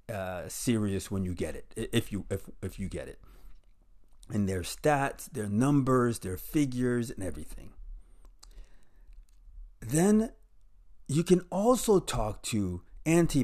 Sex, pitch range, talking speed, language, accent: male, 95-150 Hz, 125 wpm, English, American